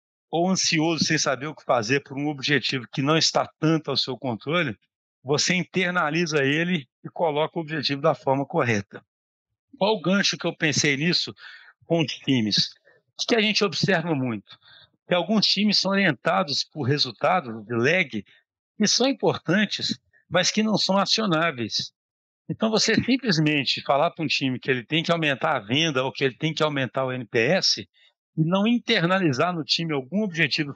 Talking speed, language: 170 wpm, Portuguese